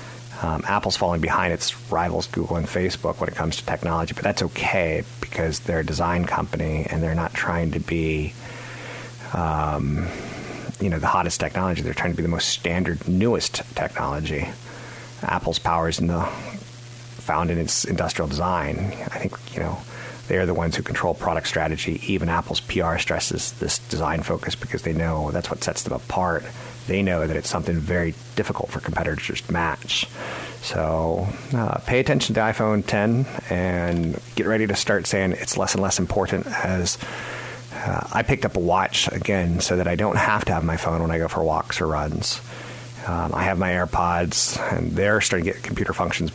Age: 30-49